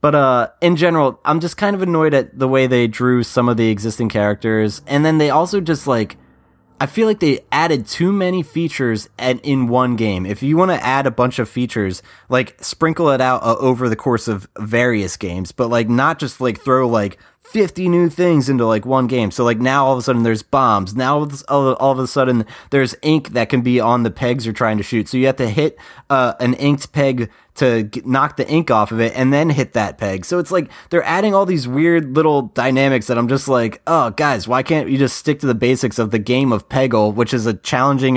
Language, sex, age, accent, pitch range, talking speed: English, male, 20-39, American, 115-140 Hz, 235 wpm